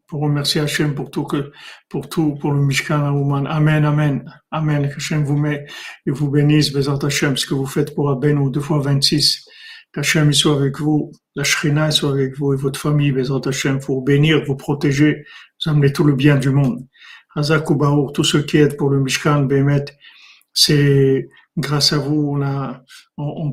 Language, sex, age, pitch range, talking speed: French, male, 50-69, 140-155 Hz, 190 wpm